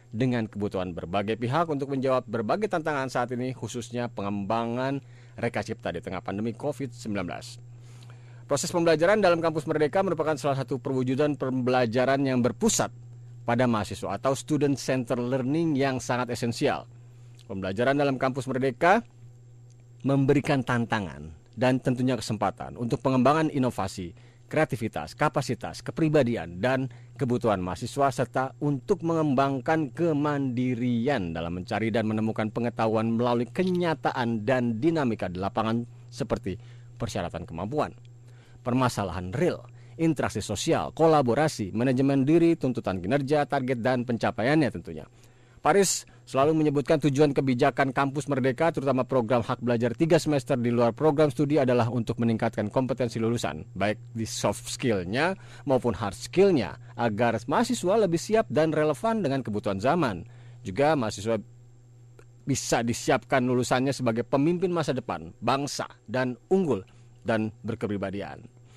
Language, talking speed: Indonesian, 120 wpm